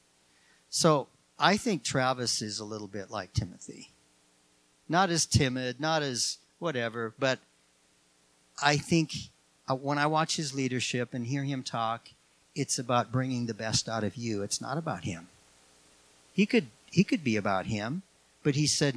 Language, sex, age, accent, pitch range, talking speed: English, male, 50-69, American, 105-155 Hz, 160 wpm